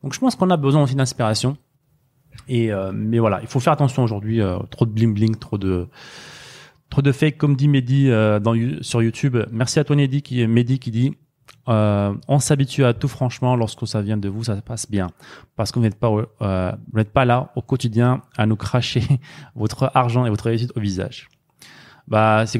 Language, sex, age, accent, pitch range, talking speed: French, male, 20-39, French, 115-145 Hz, 220 wpm